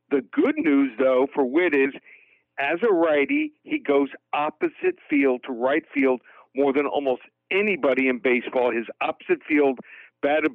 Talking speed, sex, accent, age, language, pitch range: 155 wpm, male, American, 50-69, English, 130-150 Hz